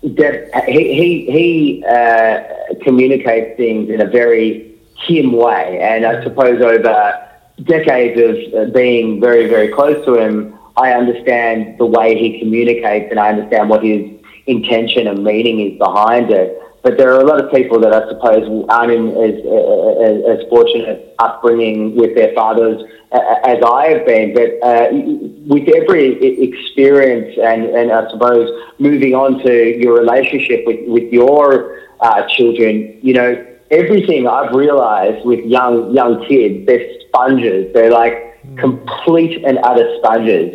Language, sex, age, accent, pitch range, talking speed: English, male, 30-49, Australian, 115-140 Hz, 150 wpm